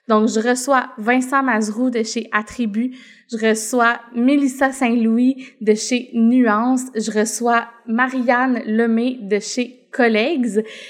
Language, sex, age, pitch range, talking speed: French, female, 20-39, 215-255 Hz, 120 wpm